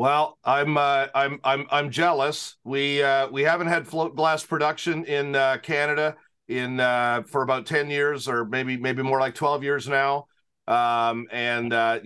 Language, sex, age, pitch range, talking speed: English, male, 40-59, 115-145 Hz, 175 wpm